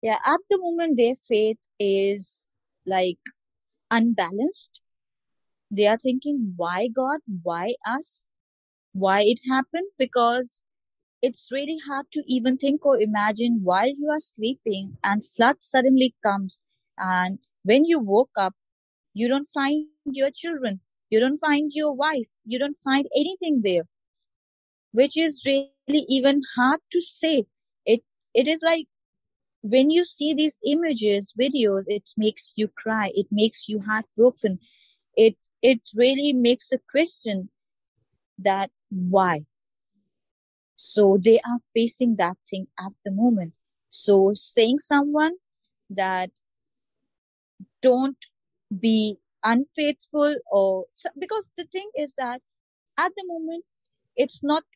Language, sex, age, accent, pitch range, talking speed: English, female, 20-39, Indian, 205-290 Hz, 130 wpm